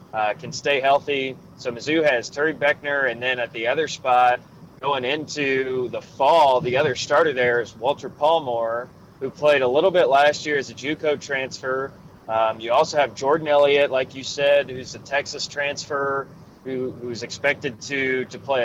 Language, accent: English, American